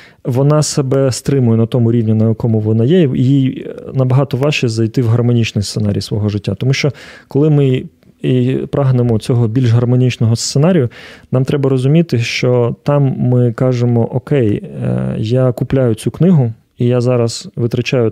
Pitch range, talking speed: 115-135 Hz, 150 wpm